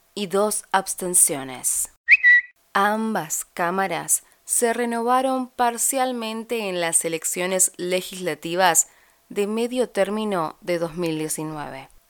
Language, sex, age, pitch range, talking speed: Spanish, female, 20-39, 170-210 Hz, 85 wpm